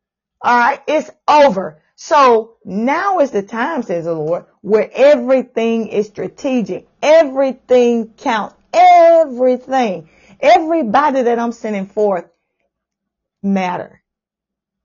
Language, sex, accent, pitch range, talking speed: English, female, American, 195-260 Hz, 95 wpm